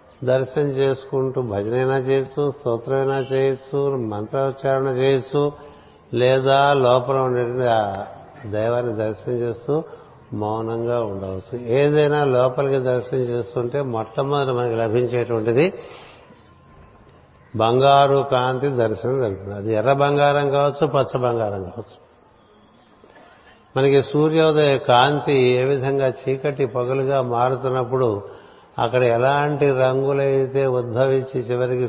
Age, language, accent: 60-79, Telugu, native